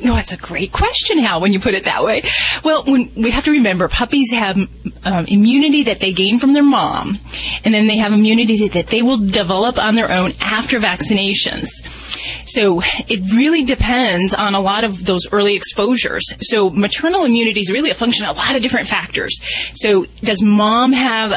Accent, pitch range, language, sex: American, 190-245 Hz, English, female